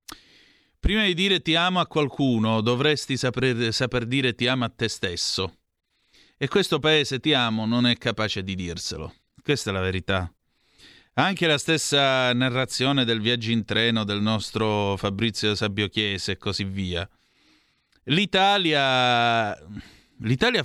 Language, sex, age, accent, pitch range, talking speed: Italian, male, 30-49, native, 105-140 Hz, 140 wpm